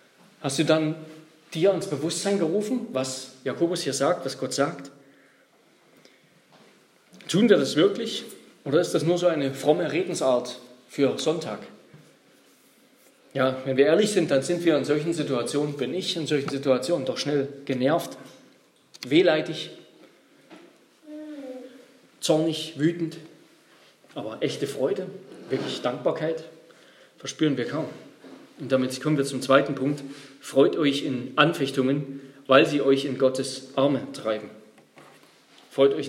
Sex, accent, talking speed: male, German, 130 wpm